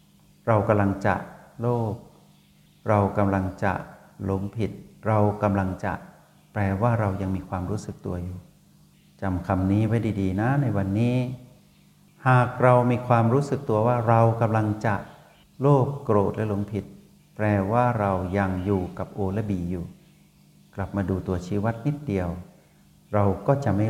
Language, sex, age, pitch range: Thai, male, 60-79, 100-120 Hz